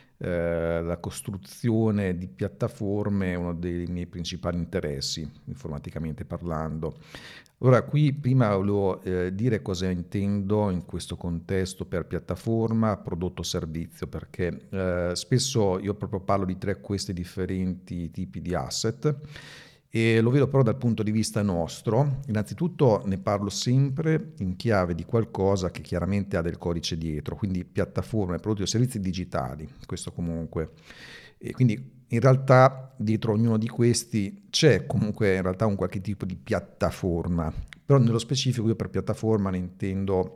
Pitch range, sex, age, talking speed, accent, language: 90-115 Hz, male, 50-69, 145 wpm, native, Italian